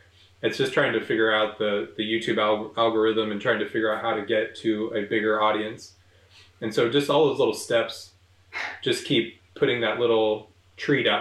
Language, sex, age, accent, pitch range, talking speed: English, male, 20-39, American, 90-115 Hz, 200 wpm